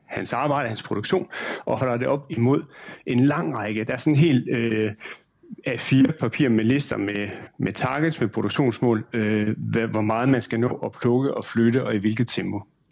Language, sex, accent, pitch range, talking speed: Danish, male, native, 110-135 Hz, 200 wpm